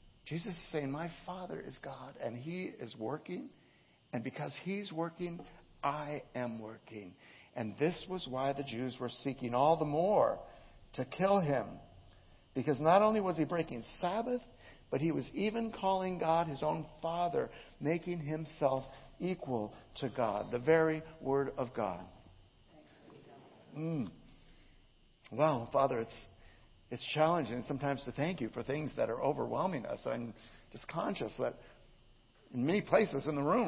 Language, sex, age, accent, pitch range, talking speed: English, male, 60-79, American, 120-160 Hz, 150 wpm